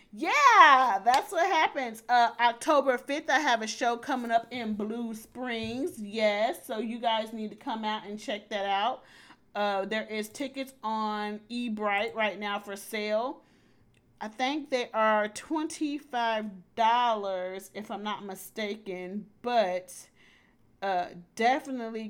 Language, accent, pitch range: English, American, 195-230 Hz